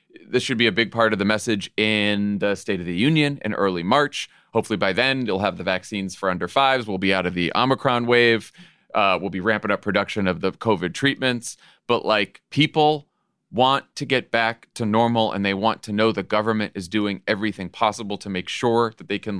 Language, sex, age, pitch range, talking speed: English, male, 30-49, 100-135 Hz, 220 wpm